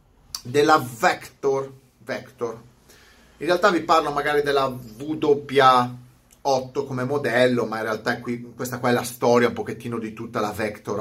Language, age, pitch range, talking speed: Italian, 30-49, 110-145 Hz, 145 wpm